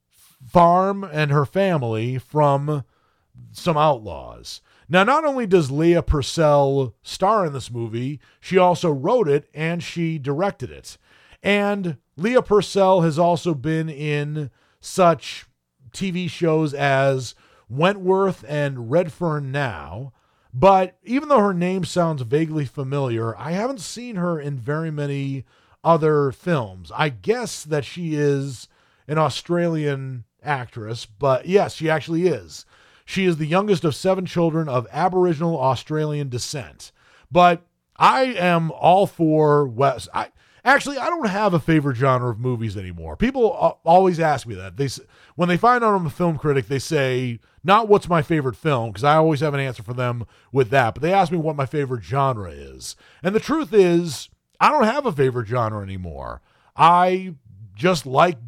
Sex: male